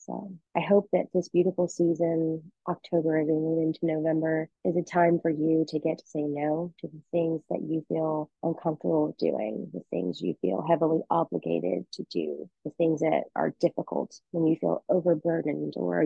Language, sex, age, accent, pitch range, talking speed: English, female, 30-49, American, 155-175 Hz, 170 wpm